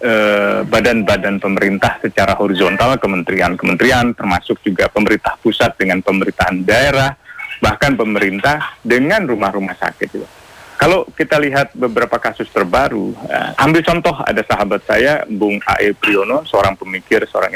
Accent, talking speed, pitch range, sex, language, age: native, 115 wpm, 120-165 Hz, male, Indonesian, 30-49